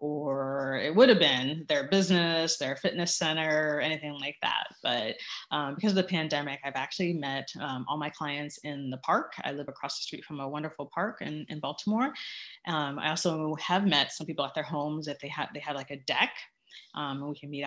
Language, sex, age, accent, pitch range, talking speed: English, female, 30-49, American, 145-180 Hz, 215 wpm